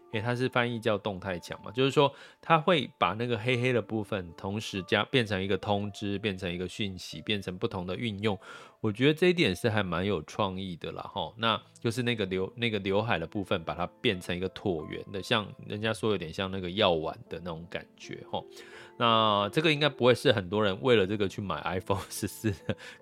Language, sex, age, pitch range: Chinese, male, 20-39, 95-120 Hz